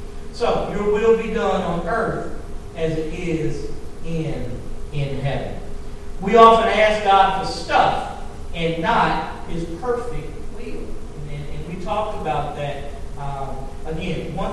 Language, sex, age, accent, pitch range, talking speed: English, male, 40-59, American, 145-200 Hz, 135 wpm